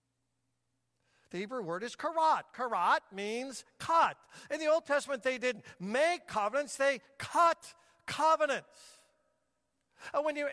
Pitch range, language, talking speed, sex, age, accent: 210-300 Hz, English, 125 wpm, male, 50-69, American